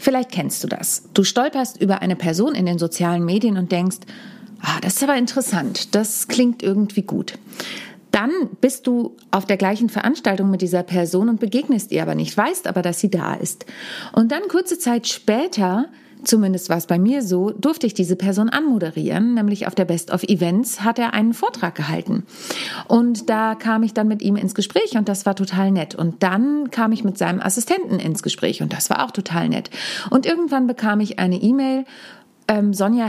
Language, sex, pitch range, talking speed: German, female, 185-235 Hz, 195 wpm